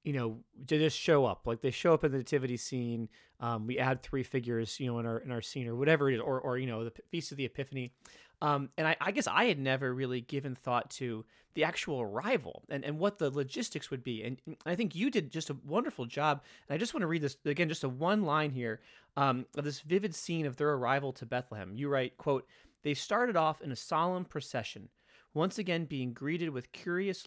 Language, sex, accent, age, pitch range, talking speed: English, male, American, 30-49, 130-165 Hz, 240 wpm